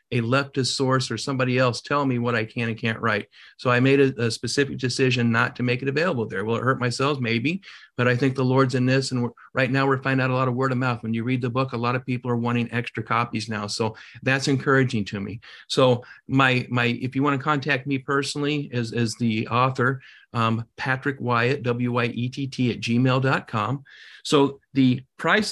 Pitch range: 120-135 Hz